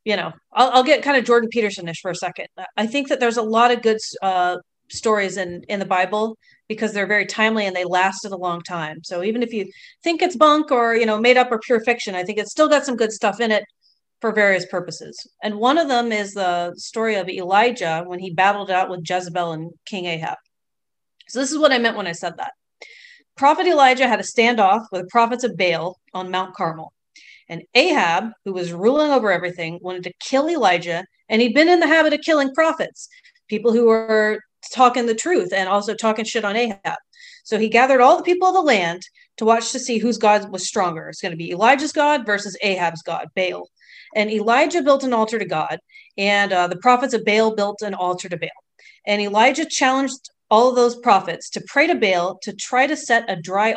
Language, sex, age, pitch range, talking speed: English, female, 30-49, 185-255 Hz, 220 wpm